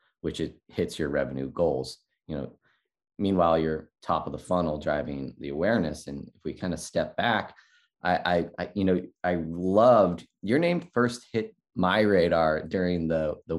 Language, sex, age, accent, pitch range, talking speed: English, male, 30-49, American, 75-90 Hz, 175 wpm